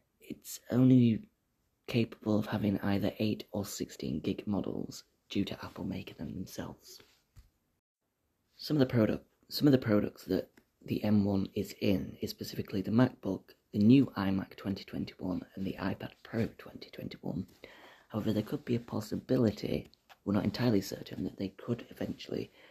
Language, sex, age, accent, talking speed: English, male, 30-49, British, 165 wpm